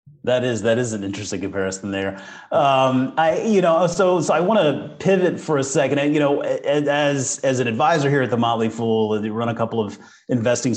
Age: 30-49